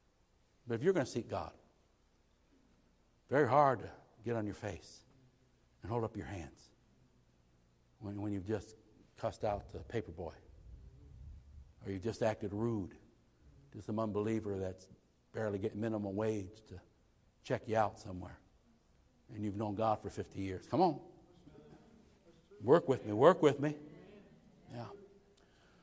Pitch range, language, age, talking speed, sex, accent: 105-140 Hz, English, 60-79, 145 wpm, male, American